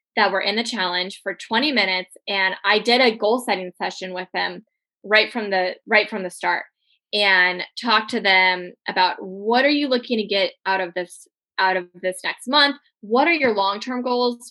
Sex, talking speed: female, 200 wpm